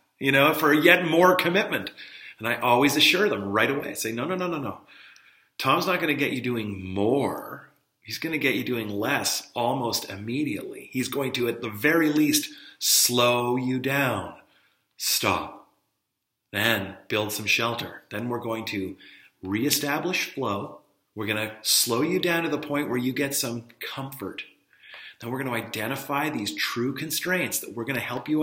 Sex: male